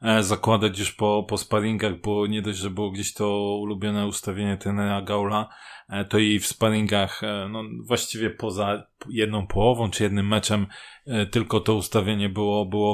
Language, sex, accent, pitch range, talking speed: Polish, male, native, 105-115 Hz, 155 wpm